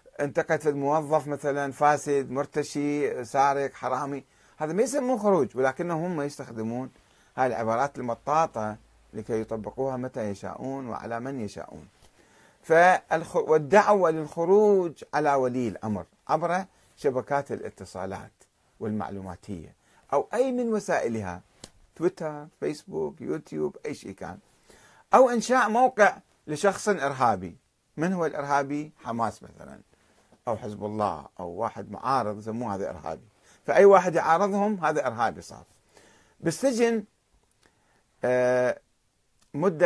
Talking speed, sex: 105 wpm, male